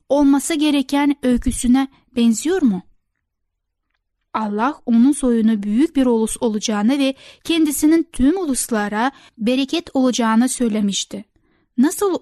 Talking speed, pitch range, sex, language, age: 100 wpm, 220-285 Hz, female, Turkish, 10-29